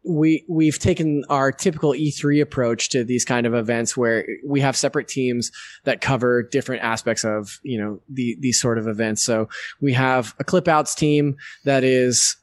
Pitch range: 120-145 Hz